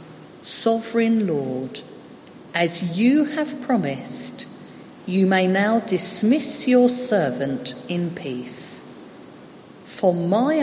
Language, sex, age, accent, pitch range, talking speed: English, female, 50-69, British, 155-225 Hz, 90 wpm